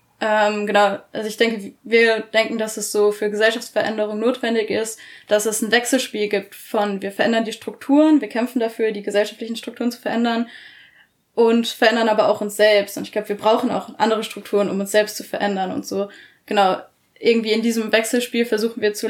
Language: German